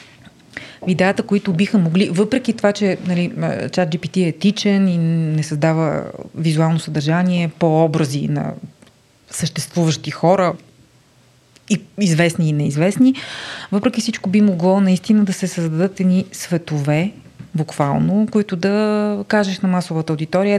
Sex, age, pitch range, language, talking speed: female, 30-49, 155-195 Hz, Bulgarian, 120 wpm